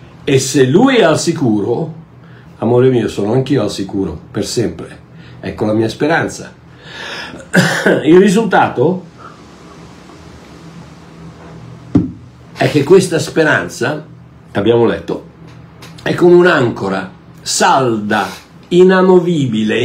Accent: native